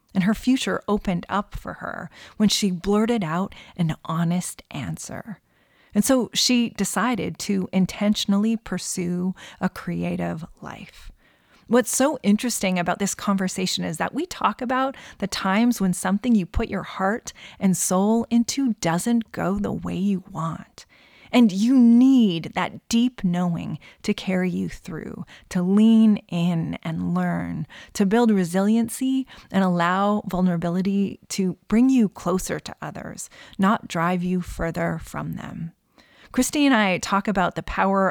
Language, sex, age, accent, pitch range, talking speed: English, female, 30-49, American, 180-220 Hz, 145 wpm